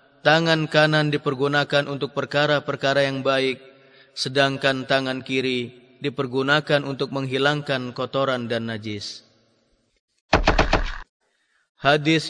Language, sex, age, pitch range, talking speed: Indonesian, male, 30-49, 135-150 Hz, 85 wpm